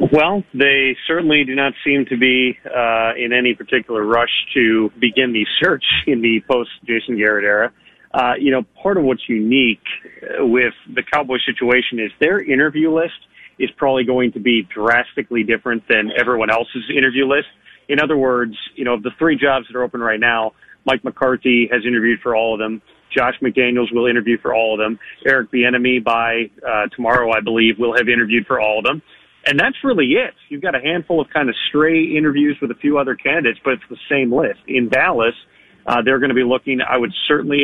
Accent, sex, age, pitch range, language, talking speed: American, male, 40-59, 120-135 Hz, English, 200 wpm